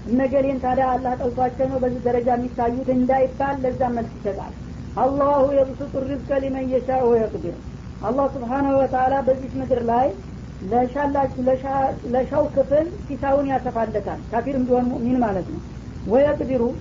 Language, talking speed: Amharic, 130 wpm